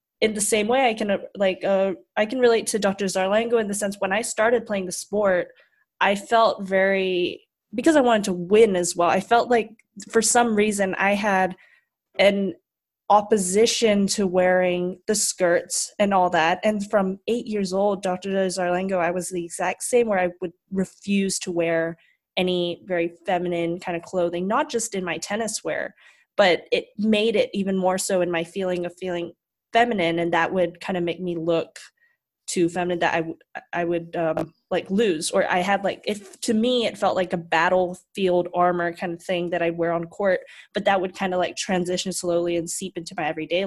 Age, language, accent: 20-39, English, American